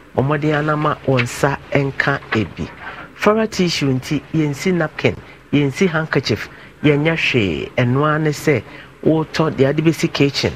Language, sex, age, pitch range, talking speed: English, male, 50-69, 135-165 Hz, 110 wpm